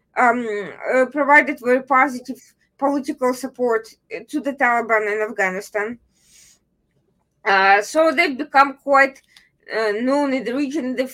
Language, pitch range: English, 235-290 Hz